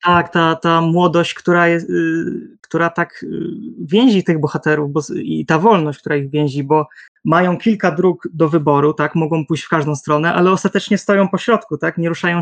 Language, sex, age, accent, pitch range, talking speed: Polish, male, 20-39, native, 155-185 Hz, 185 wpm